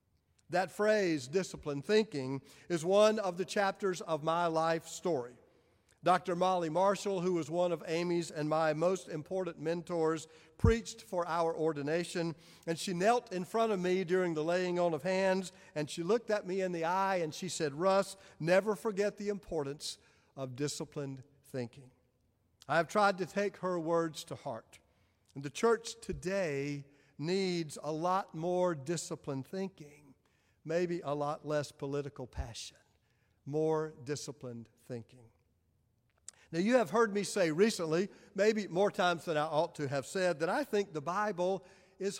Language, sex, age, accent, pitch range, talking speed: English, male, 50-69, American, 145-190 Hz, 160 wpm